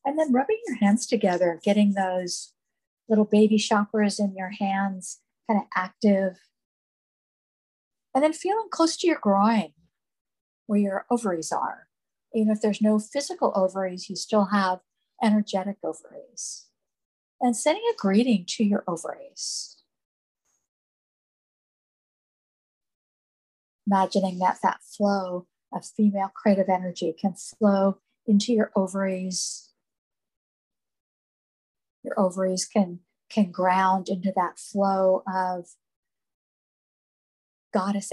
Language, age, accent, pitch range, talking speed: English, 50-69, American, 185-215 Hz, 110 wpm